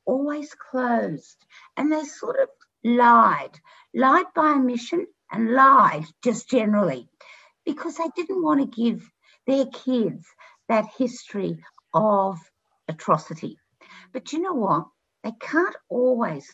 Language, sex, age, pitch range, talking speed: English, female, 60-79, 195-260 Hz, 120 wpm